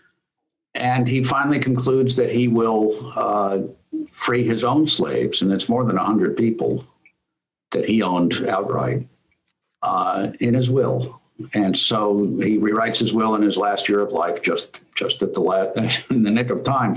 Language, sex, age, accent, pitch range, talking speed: English, male, 60-79, American, 105-130 Hz, 175 wpm